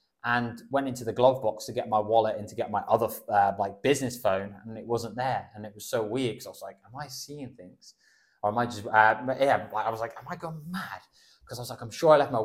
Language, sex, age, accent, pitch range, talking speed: English, male, 20-39, British, 110-135 Hz, 280 wpm